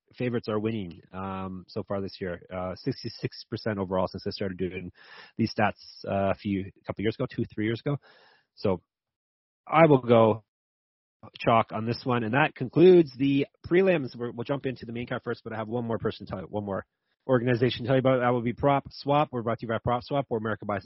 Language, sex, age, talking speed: English, male, 30-49, 230 wpm